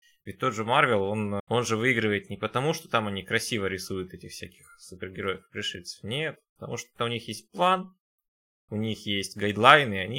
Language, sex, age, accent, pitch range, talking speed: Russian, male, 20-39, native, 100-130 Hz, 190 wpm